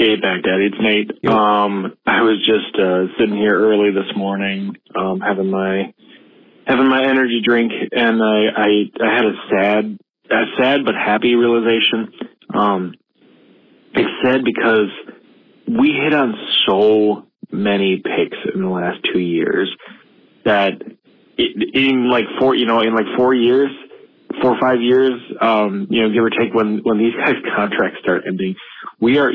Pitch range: 100-120 Hz